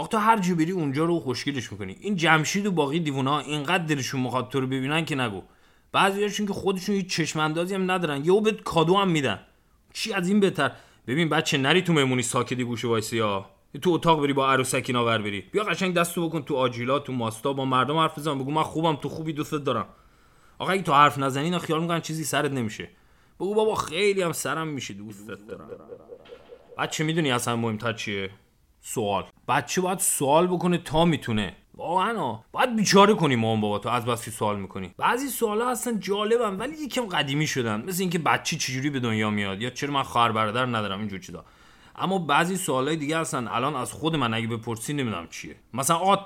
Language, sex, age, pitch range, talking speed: English, male, 30-49, 120-175 Hz, 195 wpm